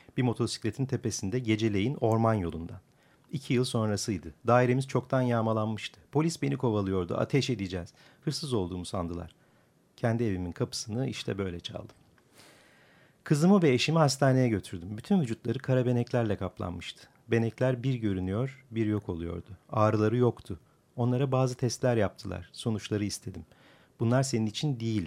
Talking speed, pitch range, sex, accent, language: 125 wpm, 100-130 Hz, male, native, Turkish